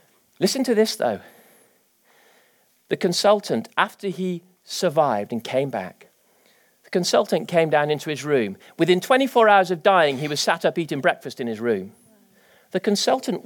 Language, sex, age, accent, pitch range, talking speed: English, male, 40-59, British, 140-195 Hz, 155 wpm